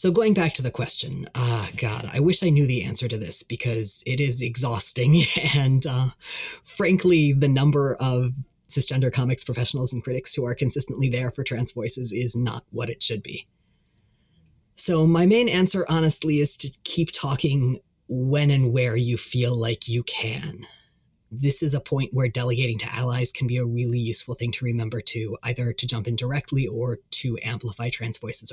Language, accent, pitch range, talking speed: English, American, 115-140 Hz, 185 wpm